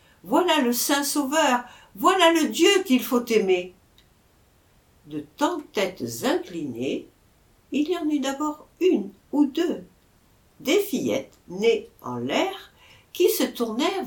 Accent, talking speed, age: French, 130 wpm, 60-79